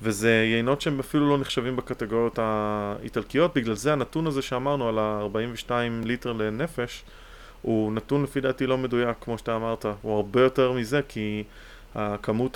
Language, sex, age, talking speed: Hebrew, male, 20-39, 155 wpm